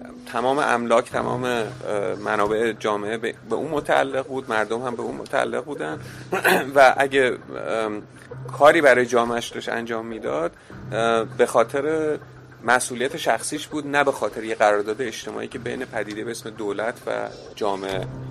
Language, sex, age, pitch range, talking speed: Persian, male, 30-49, 110-135 Hz, 135 wpm